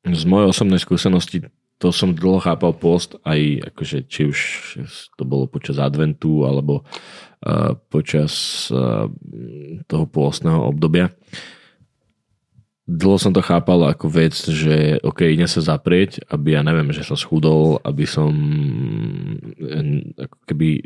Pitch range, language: 75-90 Hz, Slovak